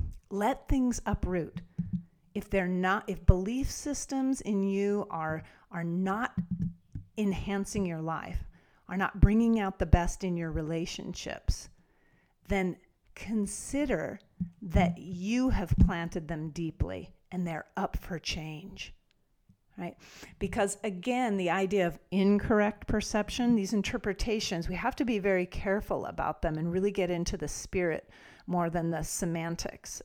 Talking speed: 135 wpm